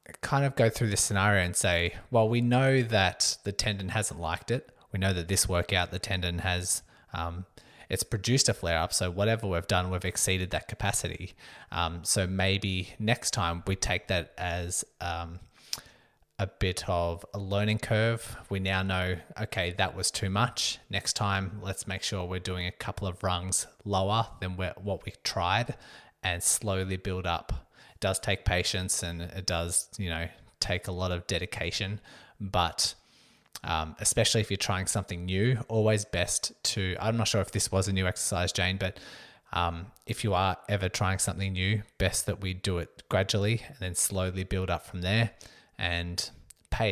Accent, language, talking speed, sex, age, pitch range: Australian, English, 180 wpm, male, 20-39, 90-105 Hz